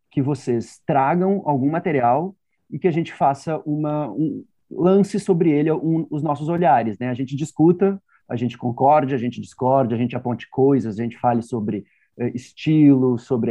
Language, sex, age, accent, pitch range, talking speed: Portuguese, male, 30-49, Brazilian, 125-155 Hz, 180 wpm